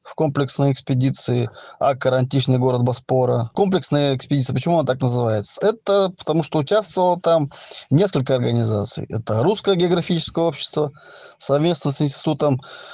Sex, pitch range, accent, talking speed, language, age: male, 130-165 Hz, native, 125 wpm, Russian, 20-39